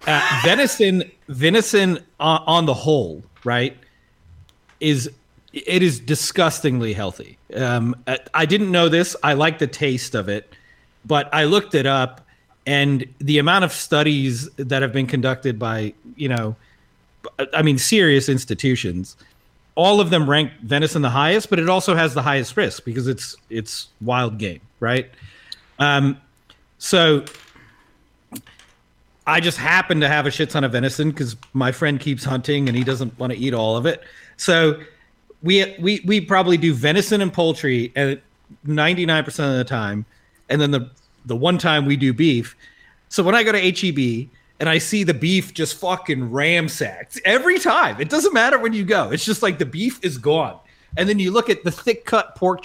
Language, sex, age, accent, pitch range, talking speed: English, male, 40-59, American, 130-175 Hz, 170 wpm